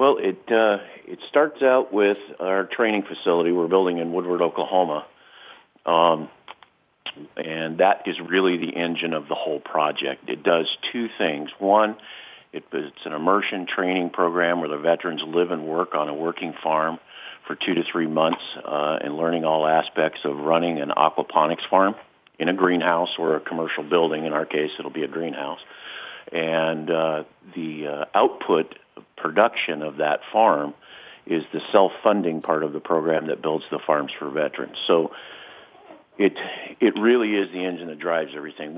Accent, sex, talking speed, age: American, male, 165 wpm, 50-69